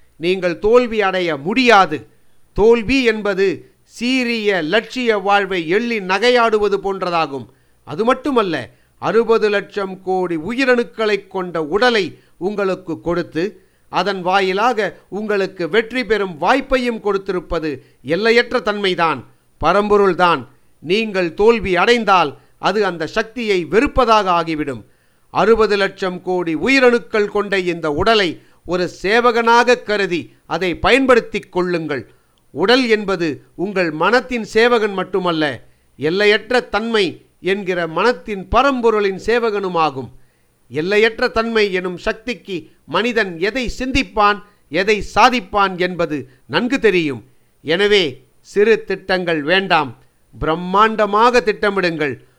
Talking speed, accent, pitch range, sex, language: 95 wpm, native, 175-225 Hz, male, Tamil